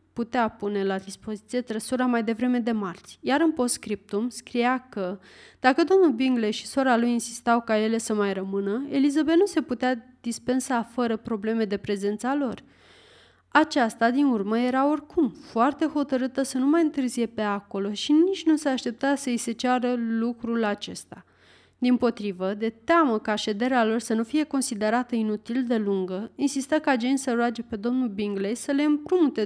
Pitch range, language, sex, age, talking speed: 220-275 Hz, Romanian, female, 30-49, 175 wpm